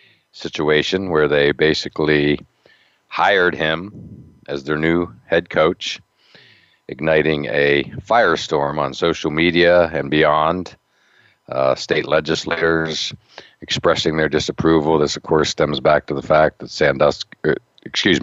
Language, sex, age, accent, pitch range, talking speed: English, male, 50-69, American, 70-90 Hz, 120 wpm